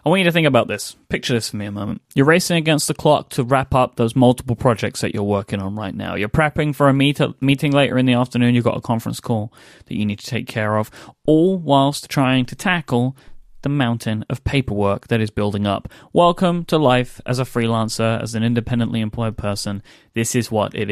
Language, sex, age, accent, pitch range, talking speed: English, male, 10-29, British, 115-150 Hz, 225 wpm